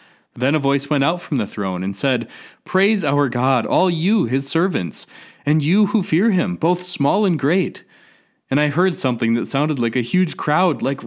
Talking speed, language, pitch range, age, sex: 200 wpm, English, 130-180 Hz, 20-39, male